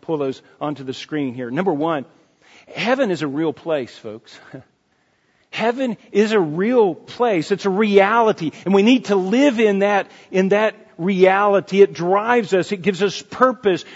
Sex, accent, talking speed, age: male, American, 165 wpm, 50-69